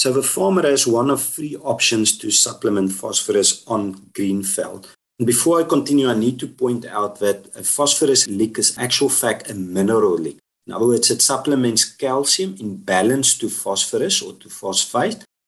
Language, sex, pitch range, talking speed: English, male, 105-140 Hz, 180 wpm